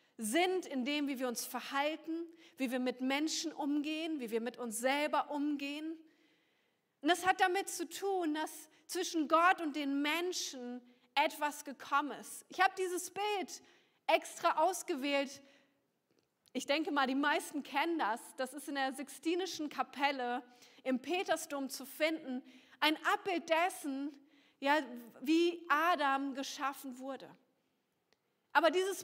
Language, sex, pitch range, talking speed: German, female, 265-335 Hz, 135 wpm